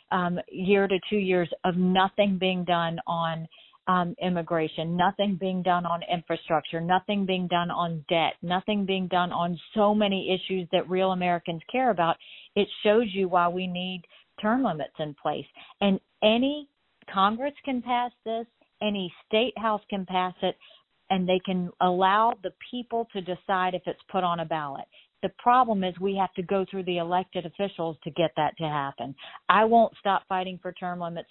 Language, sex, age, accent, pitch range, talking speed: English, female, 50-69, American, 175-200 Hz, 180 wpm